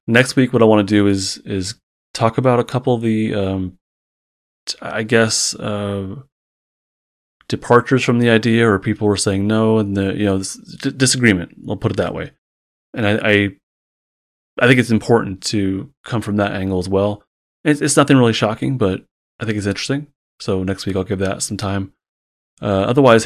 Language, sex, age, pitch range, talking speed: English, male, 30-49, 95-110 Hz, 185 wpm